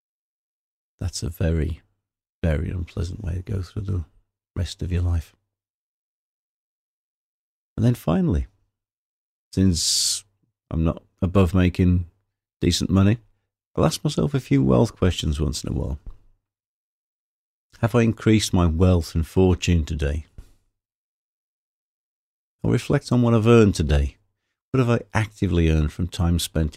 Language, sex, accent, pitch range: English, male, British, 85-105 Hz